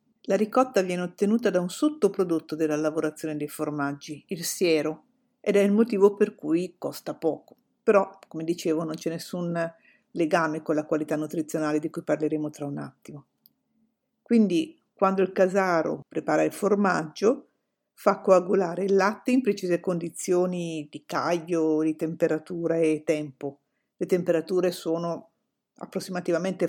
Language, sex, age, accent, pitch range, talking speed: Italian, female, 50-69, native, 165-210 Hz, 140 wpm